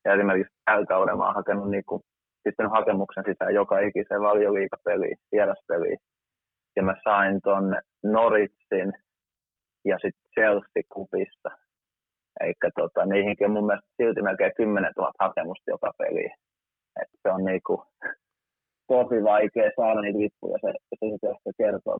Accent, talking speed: native, 125 wpm